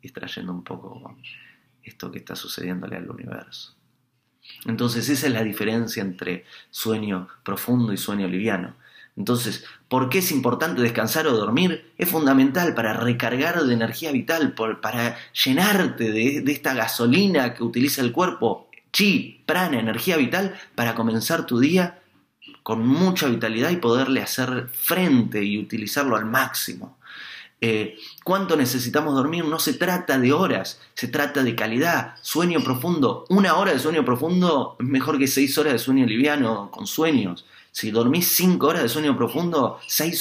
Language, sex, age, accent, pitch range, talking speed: Spanish, male, 30-49, Argentinian, 110-150 Hz, 150 wpm